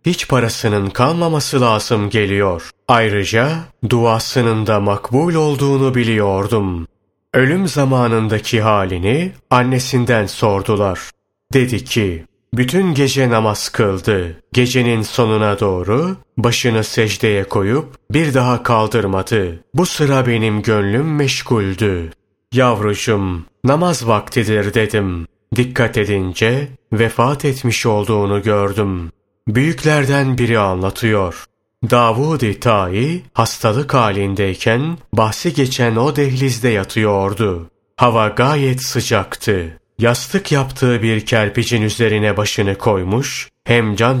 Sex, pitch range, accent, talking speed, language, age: male, 105-130 Hz, native, 95 wpm, Turkish, 30-49